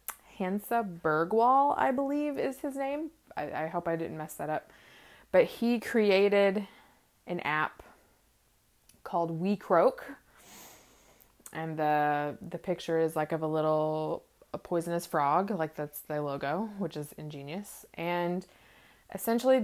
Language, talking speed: English, 135 wpm